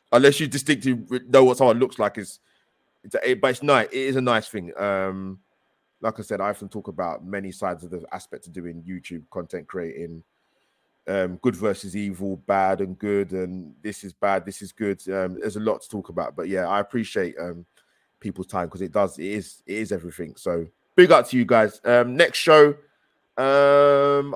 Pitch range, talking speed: 95-125 Hz, 205 wpm